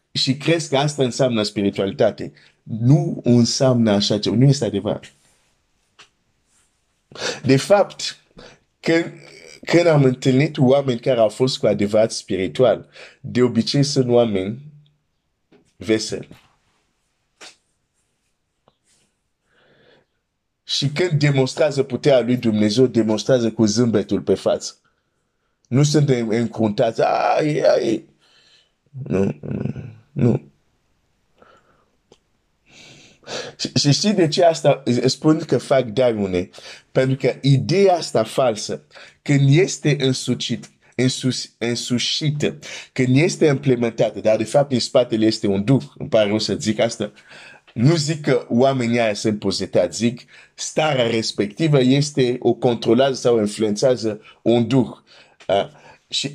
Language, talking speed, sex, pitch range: Romanian, 105 wpm, male, 115-140 Hz